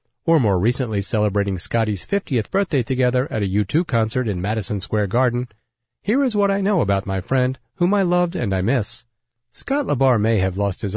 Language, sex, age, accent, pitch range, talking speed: English, male, 40-59, American, 110-160 Hz, 195 wpm